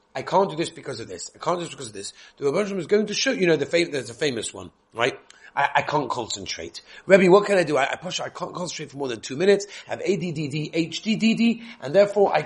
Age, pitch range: 30-49, 145-190 Hz